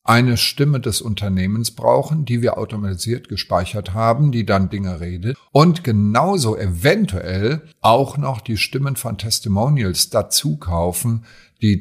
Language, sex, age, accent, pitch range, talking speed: German, male, 50-69, German, 95-130 Hz, 130 wpm